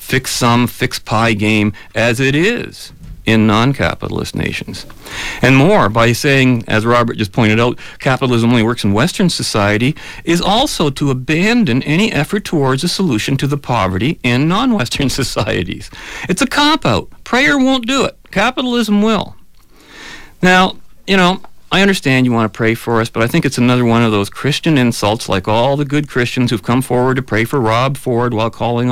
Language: English